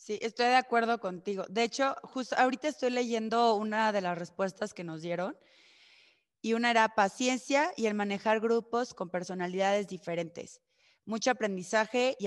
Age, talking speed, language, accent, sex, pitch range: 20-39, 155 wpm, Spanish, Mexican, female, 195-235 Hz